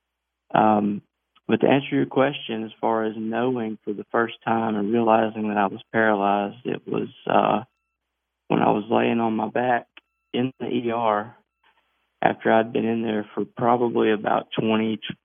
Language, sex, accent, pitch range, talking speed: English, male, American, 105-115 Hz, 165 wpm